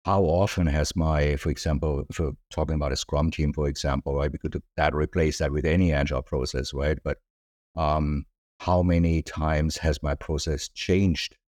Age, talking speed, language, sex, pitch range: 50-69, 180 wpm, English, male, 75-90 Hz